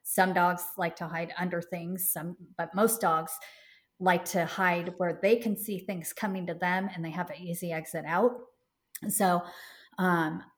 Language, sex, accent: English, female, American